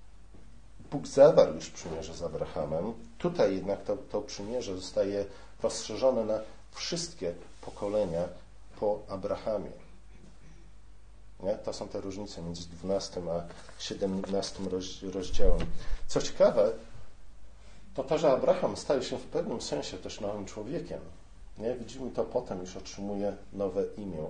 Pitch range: 90-110 Hz